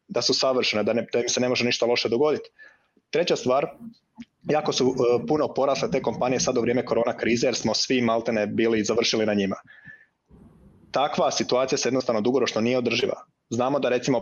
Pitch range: 115-135 Hz